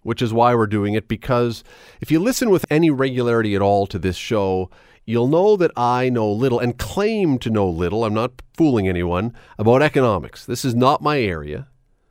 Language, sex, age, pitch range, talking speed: English, male, 40-59, 100-135 Hz, 200 wpm